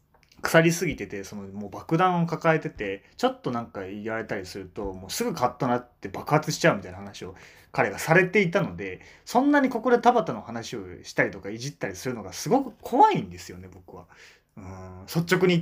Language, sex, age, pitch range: Japanese, male, 20-39, 105-175 Hz